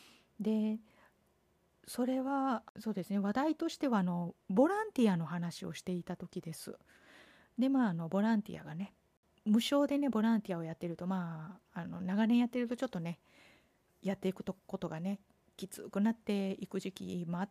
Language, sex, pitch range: Japanese, female, 180-240 Hz